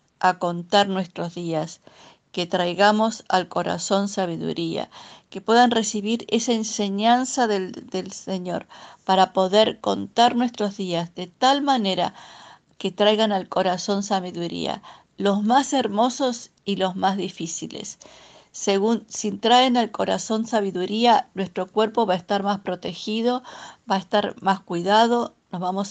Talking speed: 130 wpm